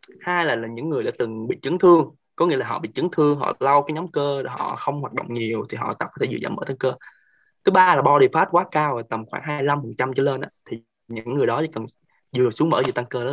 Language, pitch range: Vietnamese, 120-160 Hz